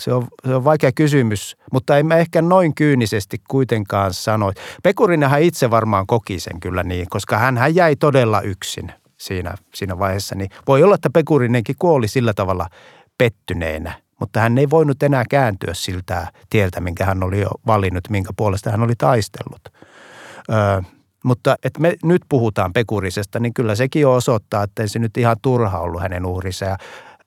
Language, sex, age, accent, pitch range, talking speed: Finnish, male, 60-79, native, 95-125 Hz, 165 wpm